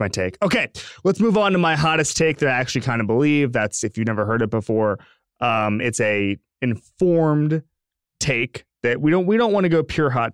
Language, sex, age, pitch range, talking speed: English, male, 20-39, 105-130 Hz, 225 wpm